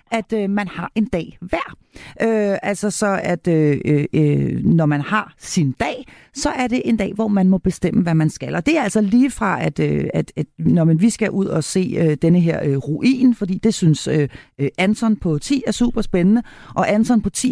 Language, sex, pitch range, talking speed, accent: Danish, female, 175-230 Hz, 220 wpm, native